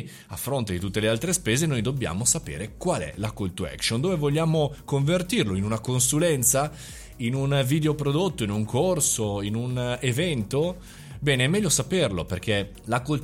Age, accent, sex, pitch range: 30-49, native, male, 90-140 Hz